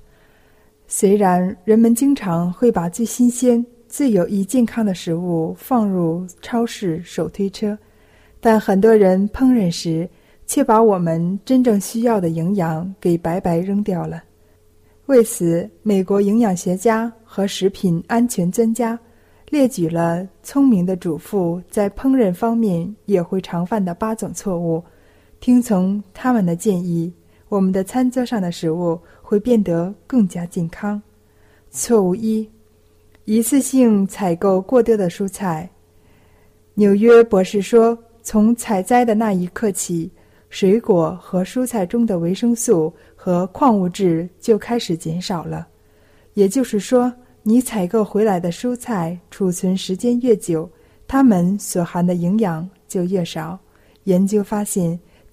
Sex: female